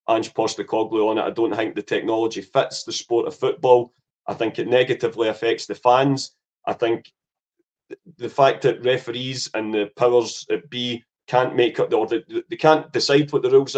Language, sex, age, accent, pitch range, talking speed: English, male, 30-49, British, 115-155 Hz, 185 wpm